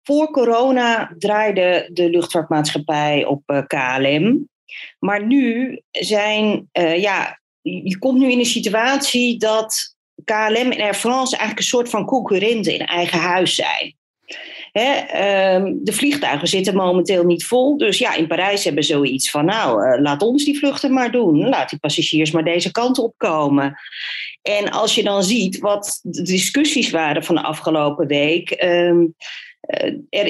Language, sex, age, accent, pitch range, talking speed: Dutch, female, 40-59, Dutch, 170-230 Hz, 160 wpm